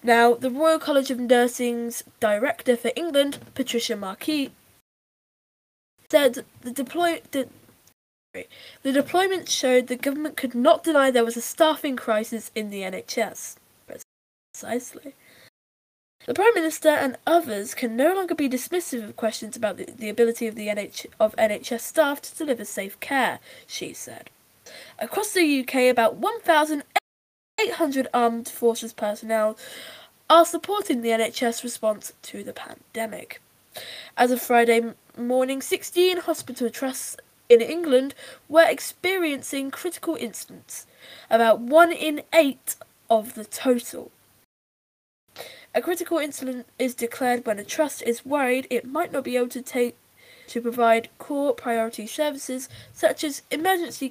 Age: 10-29